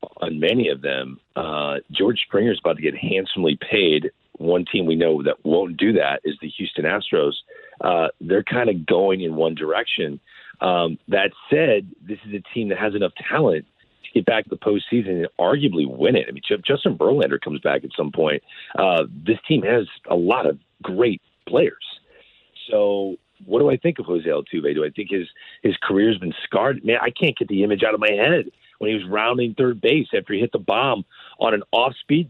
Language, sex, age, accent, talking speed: English, male, 40-59, American, 210 wpm